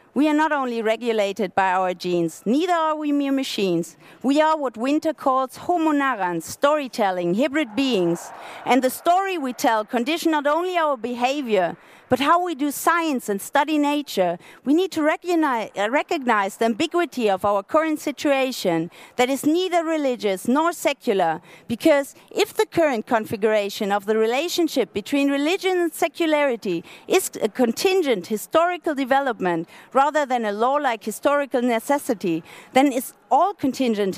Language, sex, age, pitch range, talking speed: German, female, 50-69, 220-315 Hz, 150 wpm